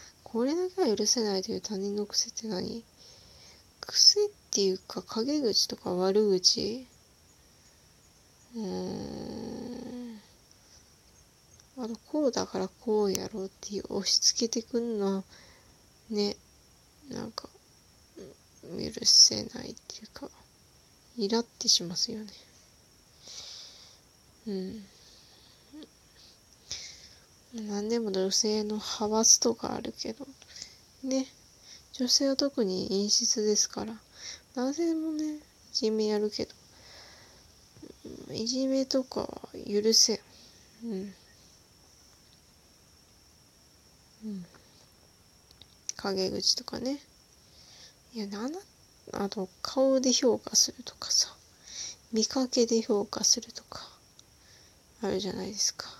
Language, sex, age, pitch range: Japanese, female, 20-39, 200-245 Hz